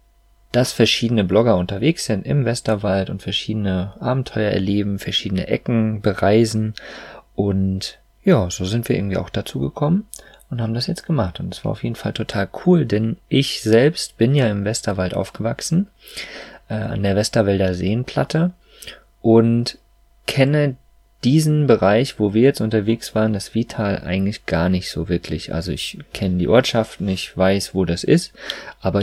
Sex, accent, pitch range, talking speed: male, German, 100-125 Hz, 160 wpm